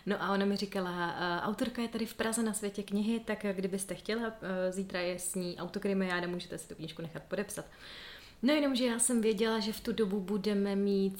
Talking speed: 210 wpm